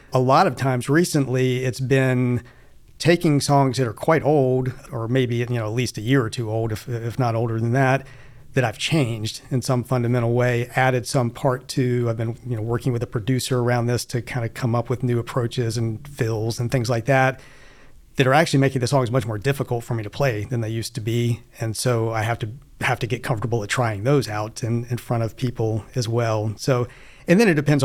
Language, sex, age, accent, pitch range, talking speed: English, male, 40-59, American, 115-135 Hz, 235 wpm